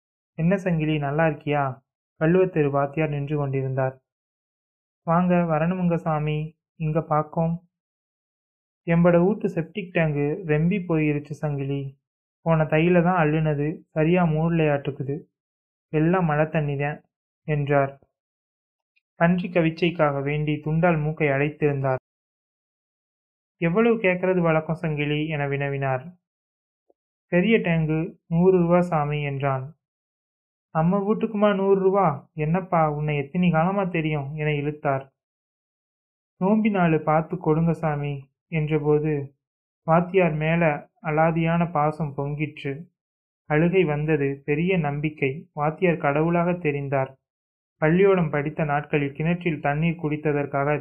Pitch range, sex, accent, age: 145-170 Hz, male, native, 30-49